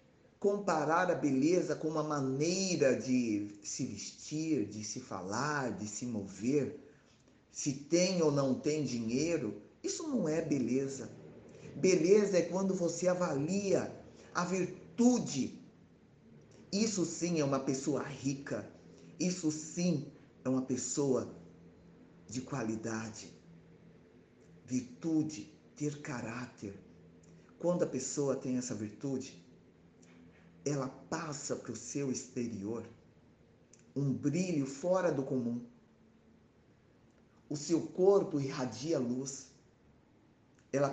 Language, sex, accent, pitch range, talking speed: Portuguese, male, Brazilian, 120-170 Hz, 105 wpm